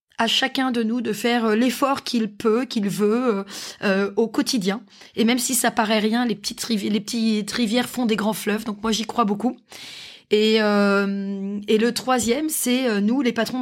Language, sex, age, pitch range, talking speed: French, female, 20-39, 210-250 Hz, 200 wpm